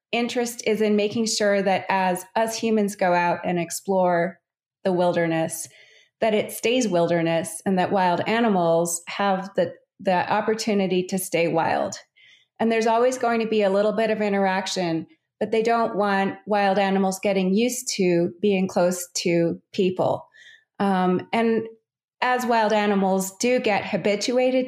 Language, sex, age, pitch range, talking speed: English, female, 30-49, 180-225 Hz, 150 wpm